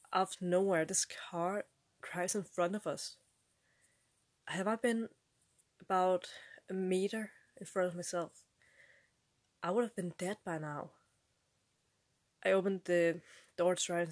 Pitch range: 165-180 Hz